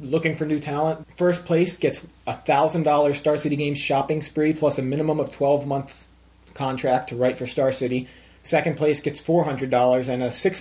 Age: 20-39